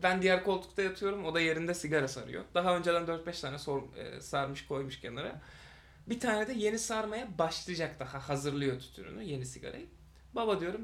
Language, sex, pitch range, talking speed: Turkish, male, 130-185 Hz, 170 wpm